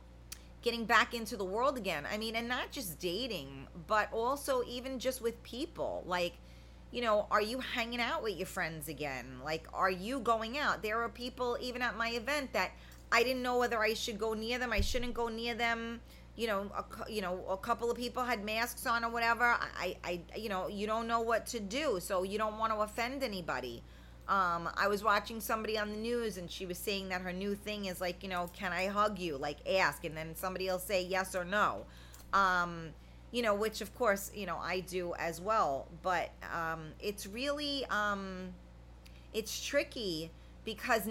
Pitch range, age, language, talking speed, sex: 180-235 Hz, 30-49, English, 205 wpm, female